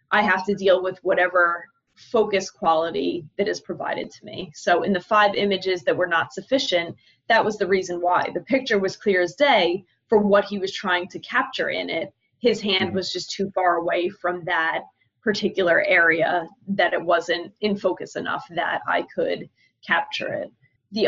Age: 20-39